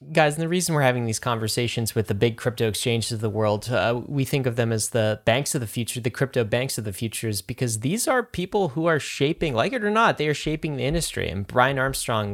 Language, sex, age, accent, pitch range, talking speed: English, male, 20-39, American, 110-140 Hz, 255 wpm